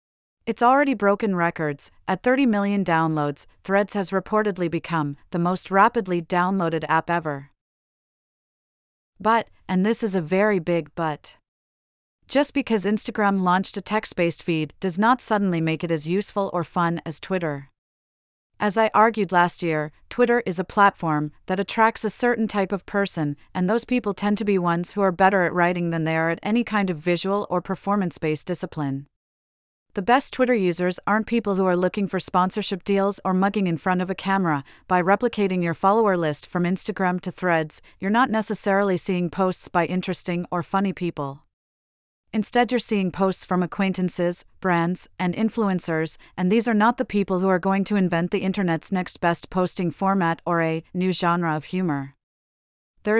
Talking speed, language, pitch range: 175 wpm, English, 170-205 Hz